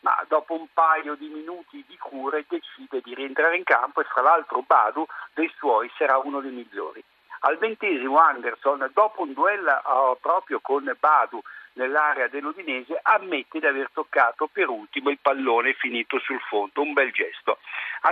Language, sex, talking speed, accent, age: Italian, male, 160 wpm, native, 50-69